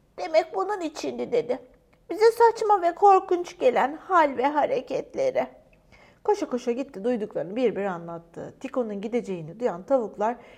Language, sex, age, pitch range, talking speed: Turkish, female, 40-59, 240-355 Hz, 130 wpm